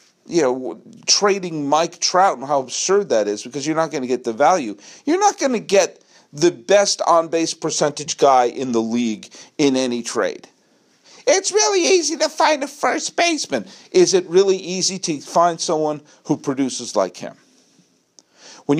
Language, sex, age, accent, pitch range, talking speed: English, male, 50-69, American, 150-220 Hz, 170 wpm